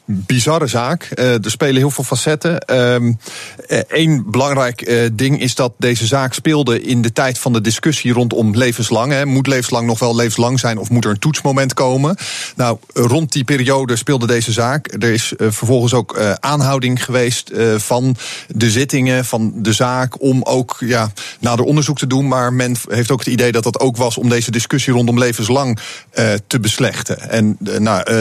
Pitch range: 115-135 Hz